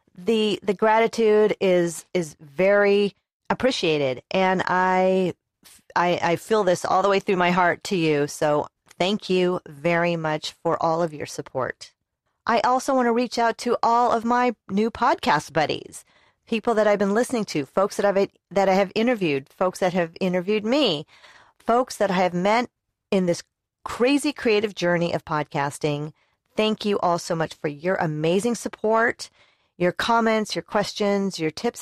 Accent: American